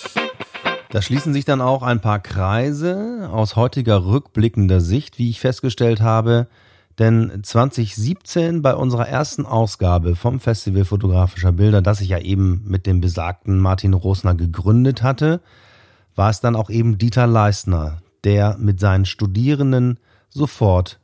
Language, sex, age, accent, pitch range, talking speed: German, male, 30-49, German, 95-115 Hz, 140 wpm